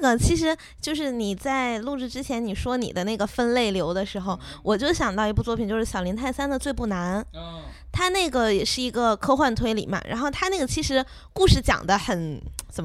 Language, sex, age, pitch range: Chinese, female, 10-29, 200-280 Hz